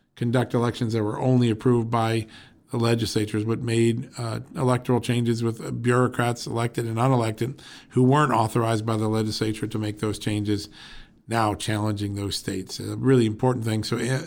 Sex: male